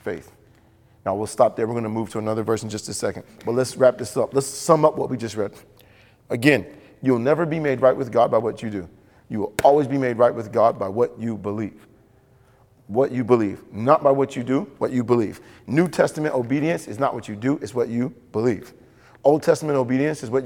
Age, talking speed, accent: 40-59, 230 wpm, American